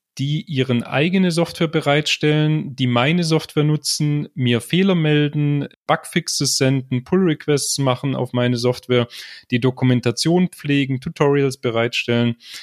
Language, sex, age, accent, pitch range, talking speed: German, male, 30-49, German, 130-160 Hz, 115 wpm